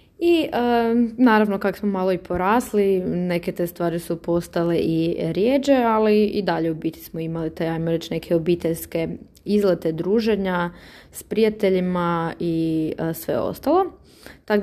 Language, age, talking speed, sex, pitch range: Croatian, 20-39, 145 wpm, female, 175-195 Hz